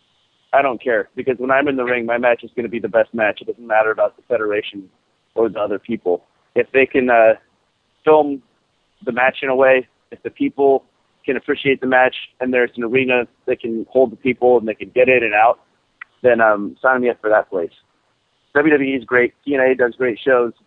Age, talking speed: 30-49, 220 wpm